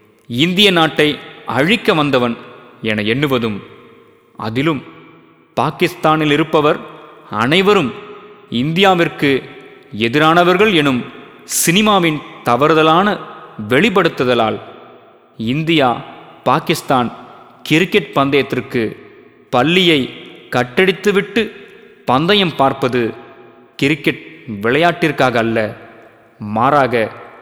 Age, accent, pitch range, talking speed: 30-49, native, 115-160 Hz, 60 wpm